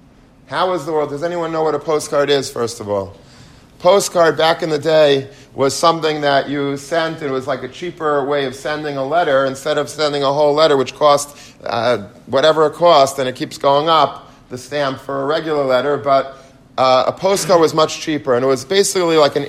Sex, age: male, 40-59